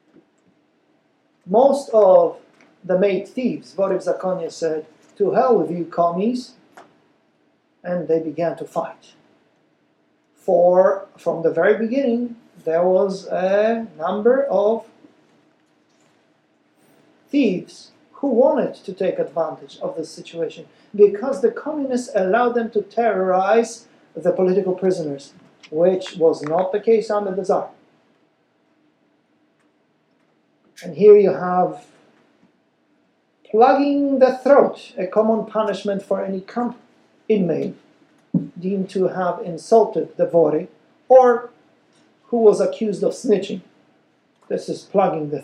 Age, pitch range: 50-69, 185-250 Hz